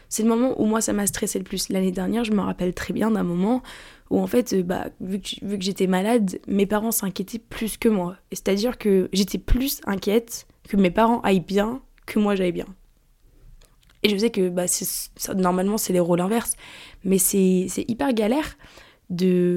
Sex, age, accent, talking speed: female, 20-39, French, 200 wpm